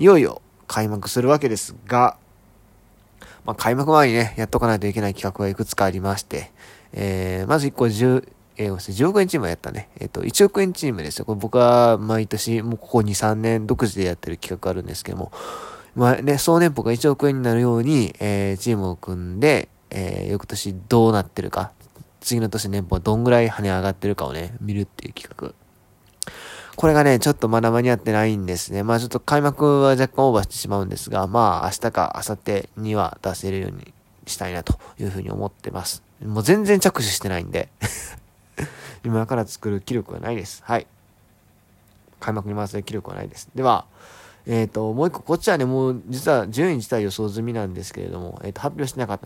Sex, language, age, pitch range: male, Japanese, 20-39, 100-125 Hz